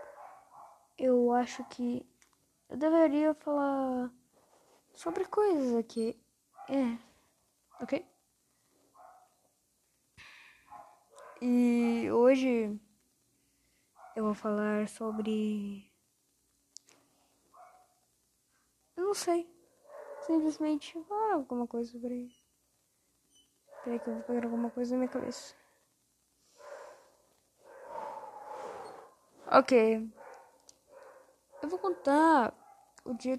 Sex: female